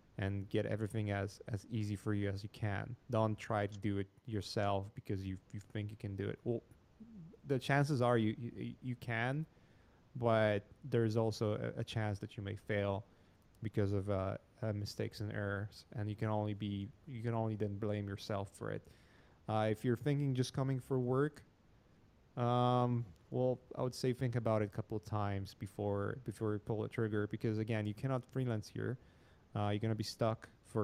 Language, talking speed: English, 200 wpm